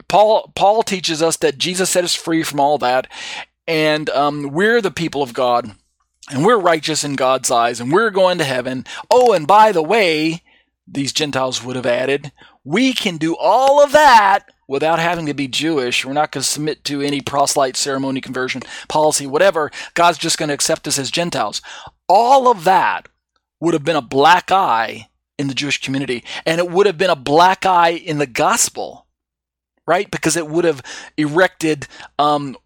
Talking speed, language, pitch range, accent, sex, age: 185 wpm, English, 135-170 Hz, American, male, 40-59